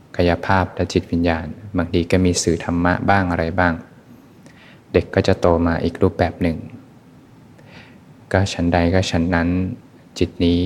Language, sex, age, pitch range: Thai, male, 20-39, 85-100 Hz